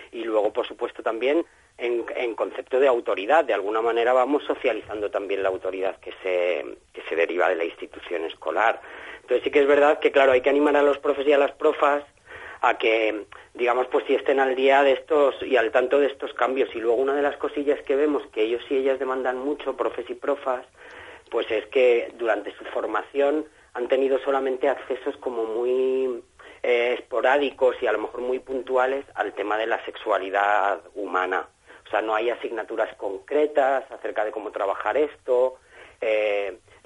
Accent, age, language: Spanish, 40-59, Spanish